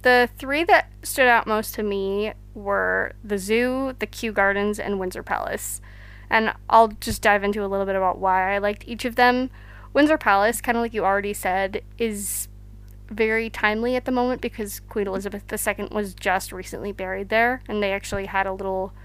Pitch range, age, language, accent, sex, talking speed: 190-220 Hz, 20-39, English, American, female, 190 wpm